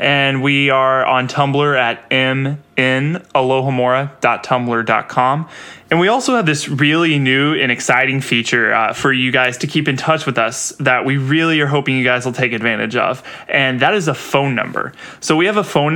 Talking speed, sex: 185 wpm, male